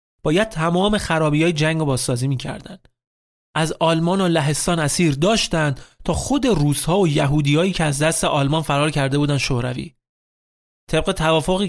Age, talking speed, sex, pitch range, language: 30-49, 150 wpm, male, 140-175 Hz, Persian